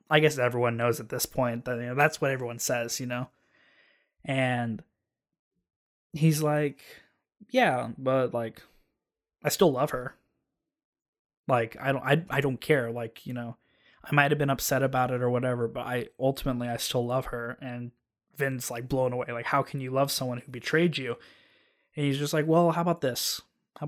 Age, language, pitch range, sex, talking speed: 20-39, English, 120-150 Hz, male, 185 wpm